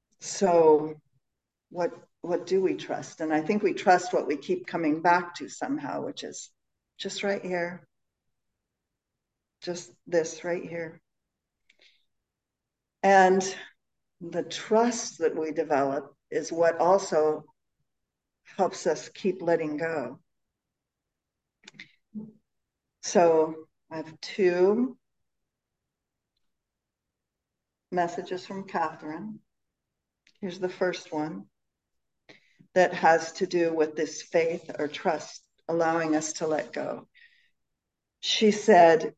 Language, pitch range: English, 160-195 Hz